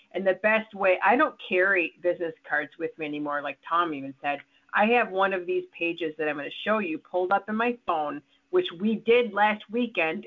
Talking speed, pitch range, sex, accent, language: 220 wpm, 170-205 Hz, female, American, English